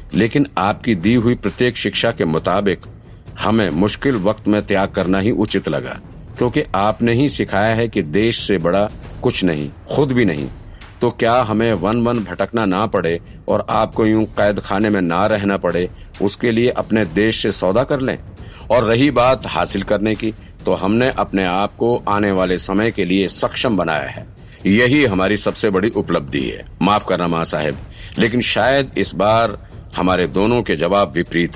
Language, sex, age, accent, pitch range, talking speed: Hindi, male, 50-69, native, 95-115 Hz, 180 wpm